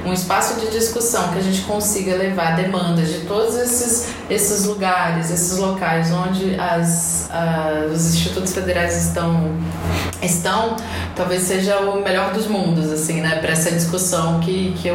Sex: female